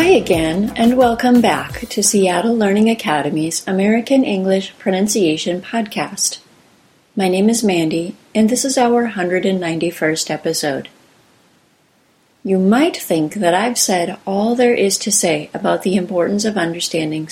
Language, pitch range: English, 175-230 Hz